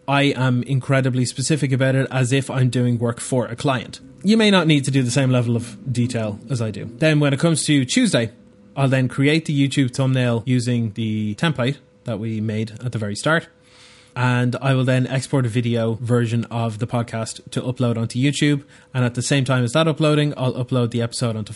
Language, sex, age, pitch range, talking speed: English, male, 20-39, 120-140 Hz, 215 wpm